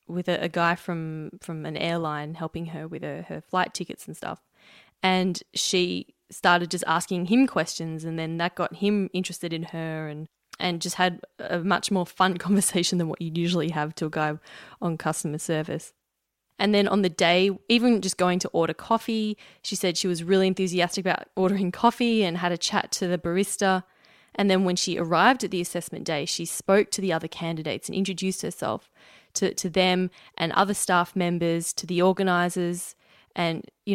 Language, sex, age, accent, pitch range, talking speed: English, female, 20-39, Australian, 170-190 Hz, 190 wpm